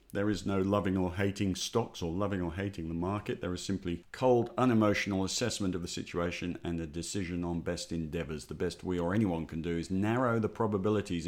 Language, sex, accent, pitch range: English, male, British, 85-105 Hz